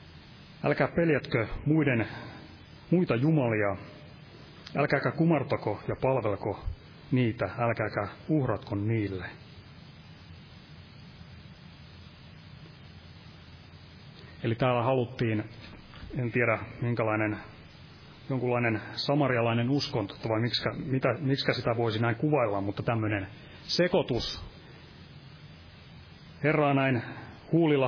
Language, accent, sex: Finnish, native, male